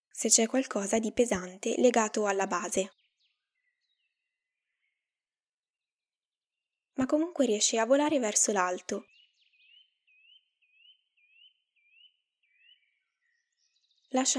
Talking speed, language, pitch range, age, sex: 65 wpm, Italian, 205-305 Hz, 10-29, female